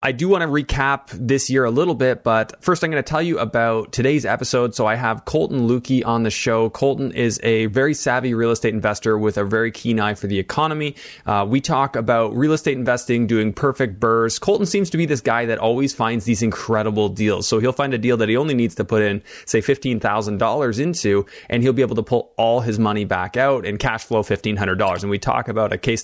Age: 20-39